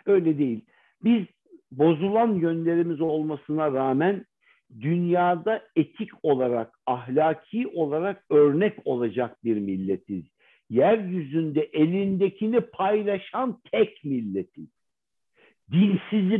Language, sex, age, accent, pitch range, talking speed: Turkish, male, 60-79, native, 155-210 Hz, 80 wpm